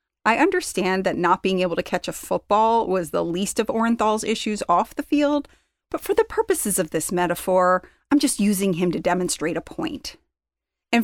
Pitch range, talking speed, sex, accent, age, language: 180-265 Hz, 190 wpm, female, American, 30-49, English